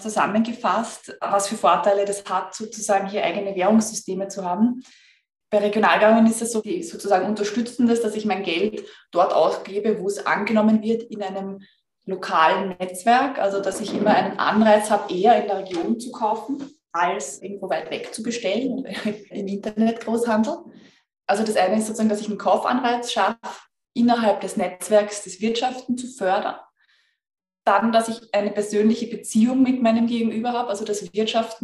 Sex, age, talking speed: female, 20-39, 165 wpm